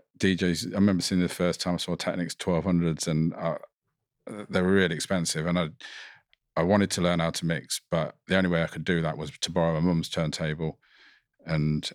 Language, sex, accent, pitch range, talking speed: English, male, British, 80-90 Hz, 200 wpm